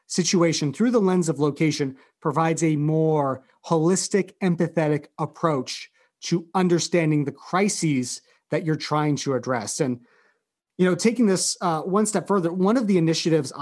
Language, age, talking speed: English, 30-49, 150 wpm